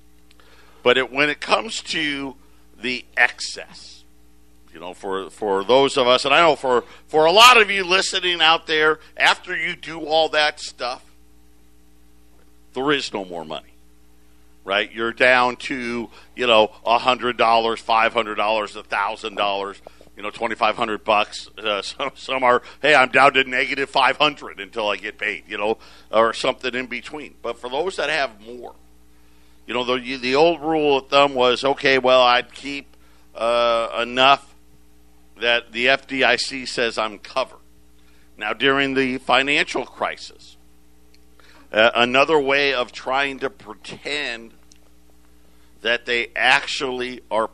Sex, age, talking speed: male, 50-69, 145 wpm